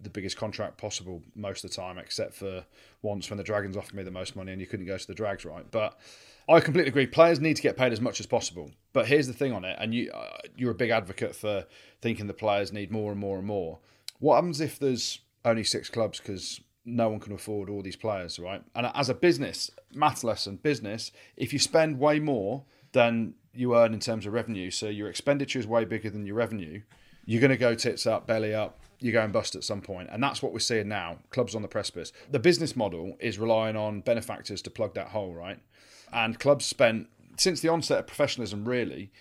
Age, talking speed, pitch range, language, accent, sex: 30-49, 235 wpm, 100-125 Hz, English, British, male